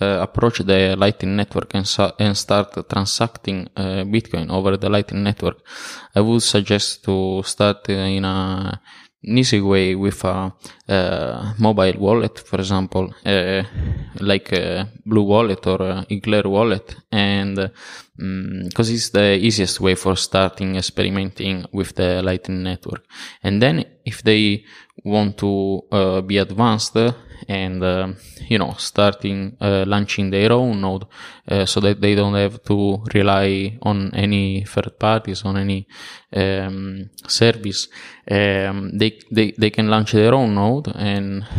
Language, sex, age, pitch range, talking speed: English, male, 20-39, 95-105 Hz, 140 wpm